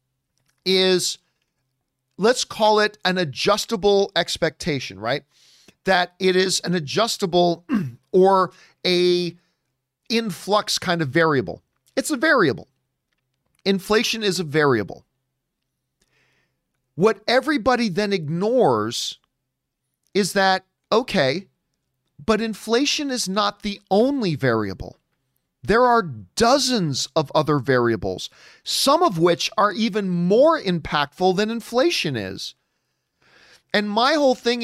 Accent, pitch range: American, 150-215 Hz